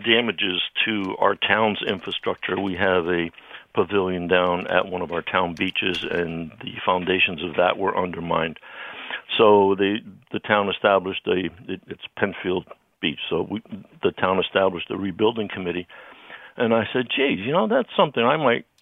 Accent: American